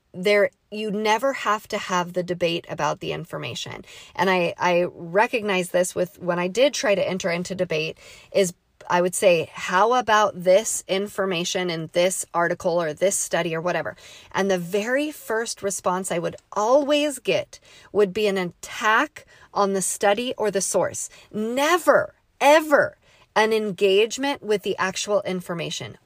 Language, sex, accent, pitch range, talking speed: English, female, American, 175-215 Hz, 155 wpm